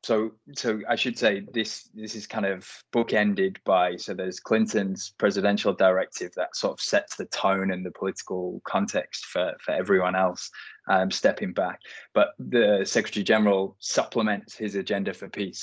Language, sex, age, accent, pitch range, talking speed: English, male, 20-39, British, 100-115 Hz, 165 wpm